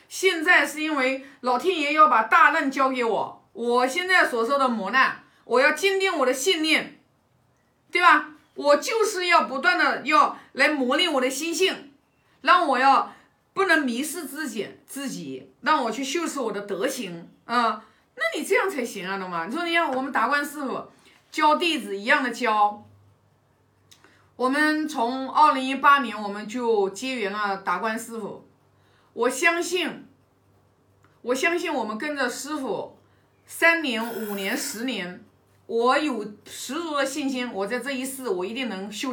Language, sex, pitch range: Chinese, female, 230-340 Hz